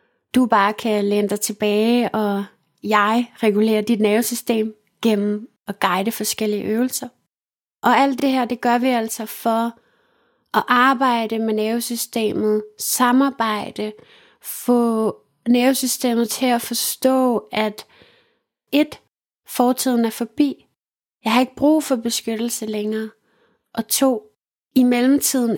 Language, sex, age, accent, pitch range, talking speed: Danish, female, 30-49, native, 215-245 Hz, 115 wpm